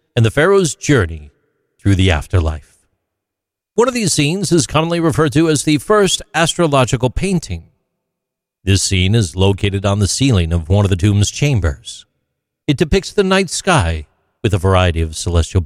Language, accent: English, American